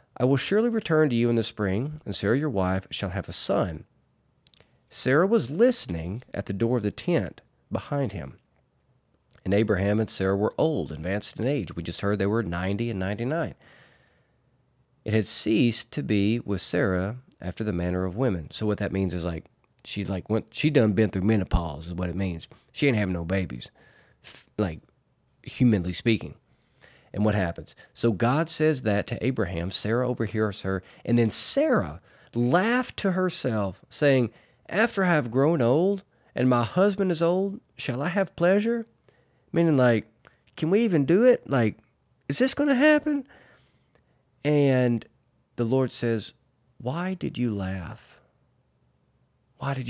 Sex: male